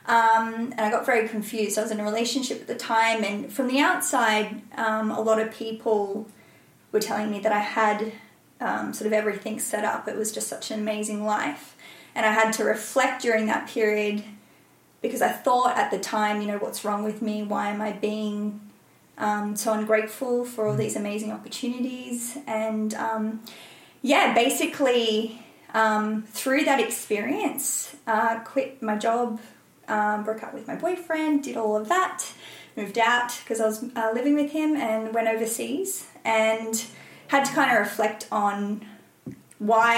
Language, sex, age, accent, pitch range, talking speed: English, female, 20-39, Australian, 215-235 Hz, 175 wpm